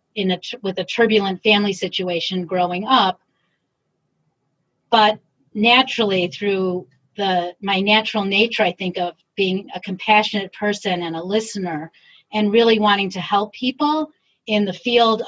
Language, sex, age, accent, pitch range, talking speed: English, female, 40-59, American, 180-215 Hz, 140 wpm